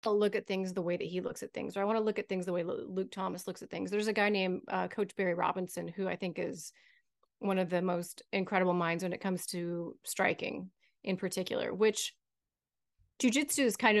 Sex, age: female, 30-49